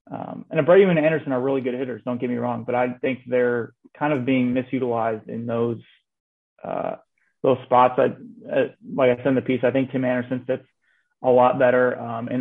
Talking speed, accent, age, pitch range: 215 wpm, American, 30-49, 120-135 Hz